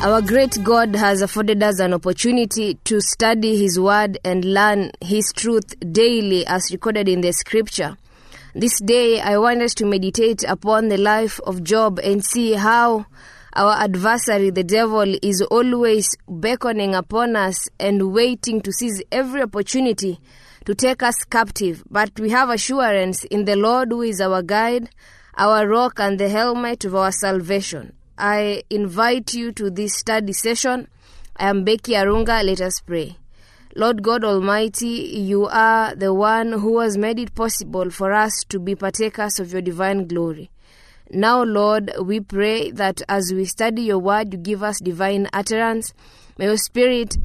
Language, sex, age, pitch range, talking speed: English, female, 20-39, 195-225 Hz, 165 wpm